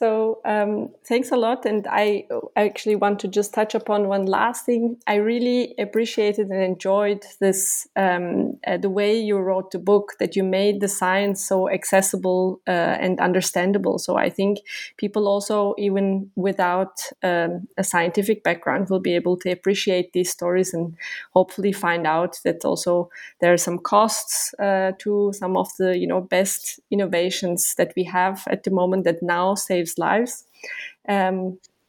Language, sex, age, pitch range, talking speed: English, female, 20-39, 185-210 Hz, 165 wpm